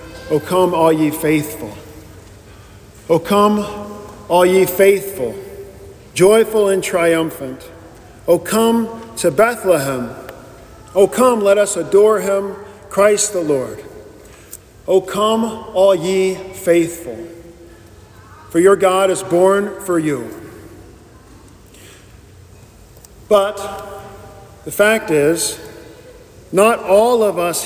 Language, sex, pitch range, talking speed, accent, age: English, male, 150-195 Hz, 100 wpm, American, 50-69